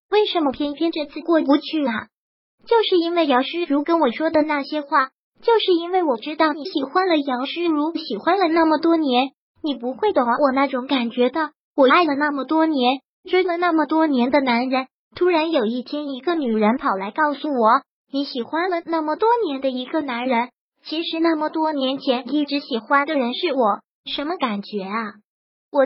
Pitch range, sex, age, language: 265-330 Hz, male, 20-39, Chinese